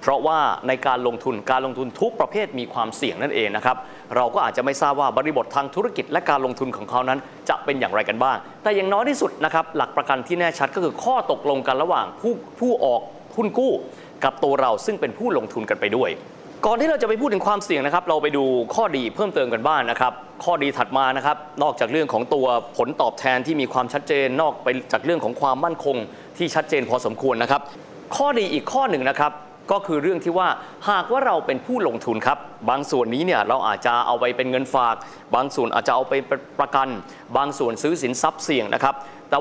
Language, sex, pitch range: Thai, male, 130-175 Hz